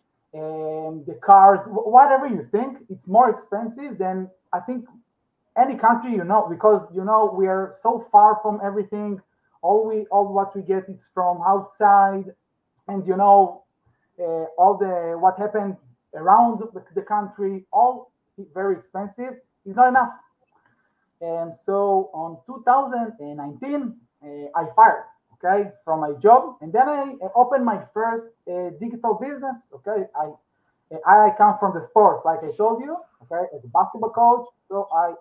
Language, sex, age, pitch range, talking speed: English, male, 30-49, 180-235 Hz, 155 wpm